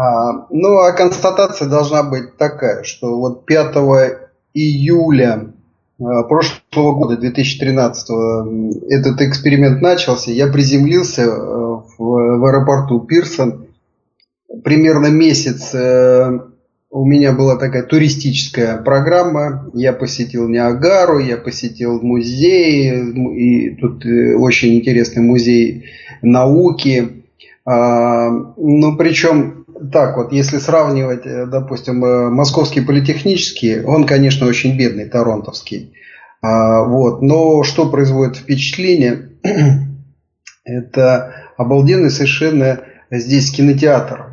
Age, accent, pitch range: 30-49, native, 120-145 Hz